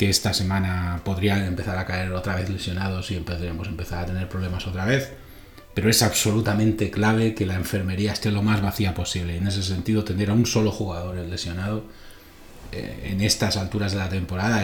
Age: 30-49